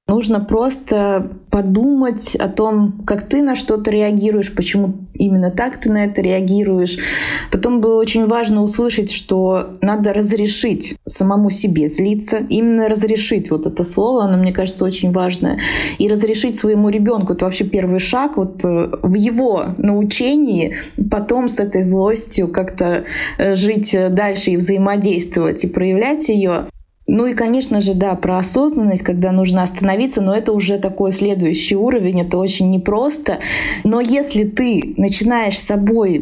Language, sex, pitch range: Russian, female, 190-220 Hz